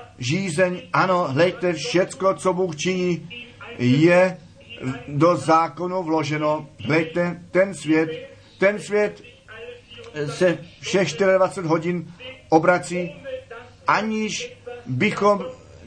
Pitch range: 155-190 Hz